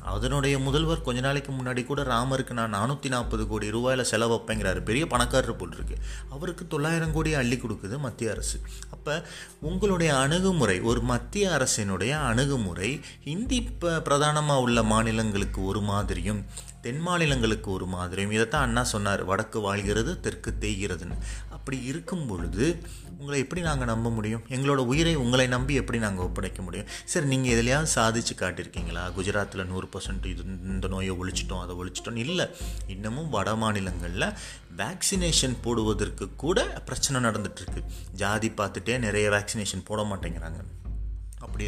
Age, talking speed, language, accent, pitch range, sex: 30-49, 135 wpm, Tamil, native, 95-130 Hz, male